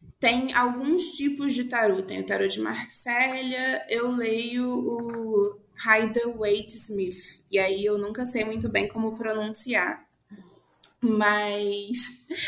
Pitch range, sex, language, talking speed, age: 215-255 Hz, female, Portuguese, 120 wpm, 20-39